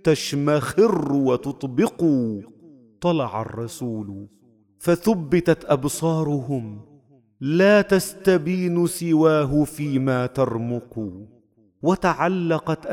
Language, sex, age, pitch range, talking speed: Arabic, male, 40-59, 115-165 Hz, 55 wpm